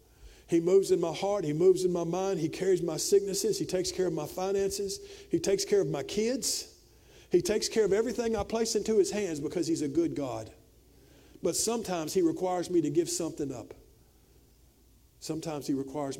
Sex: male